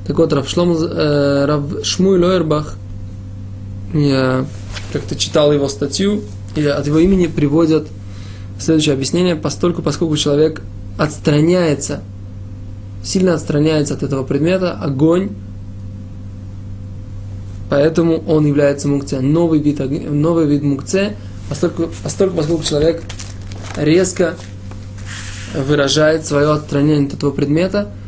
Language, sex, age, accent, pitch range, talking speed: Russian, male, 20-39, Serbian, 100-150 Hz, 95 wpm